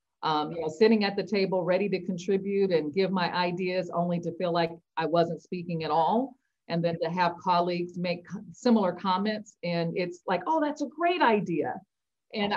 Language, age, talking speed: English, 40-59, 180 wpm